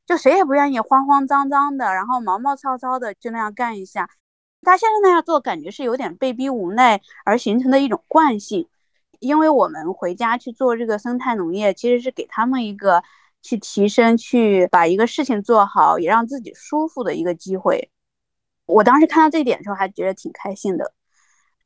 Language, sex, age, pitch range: Chinese, female, 20-39, 215-285 Hz